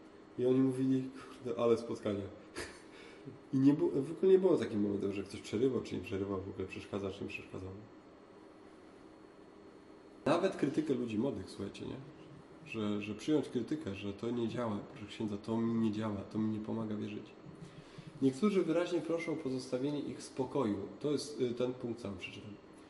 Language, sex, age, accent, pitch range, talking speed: Polish, male, 20-39, native, 105-130 Hz, 170 wpm